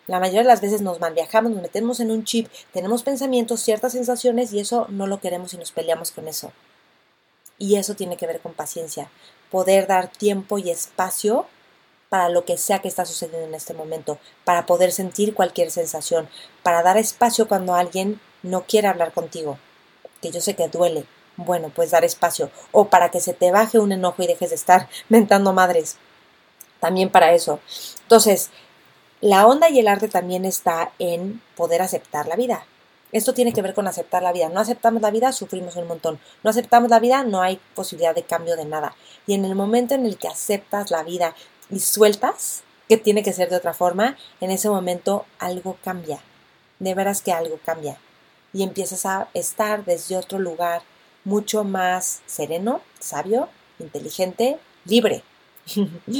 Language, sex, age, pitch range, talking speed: Spanish, female, 30-49, 175-215 Hz, 180 wpm